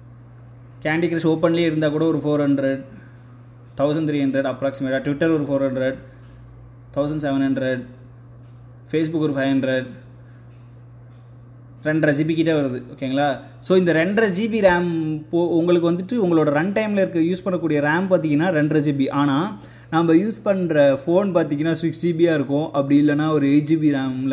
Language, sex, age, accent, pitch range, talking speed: Tamil, male, 20-39, native, 135-180 Hz, 150 wpm